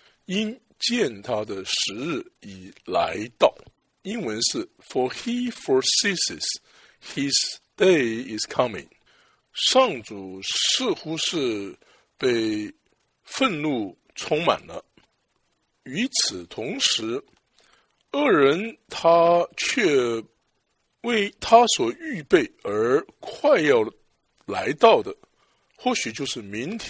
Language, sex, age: English, male, 60-79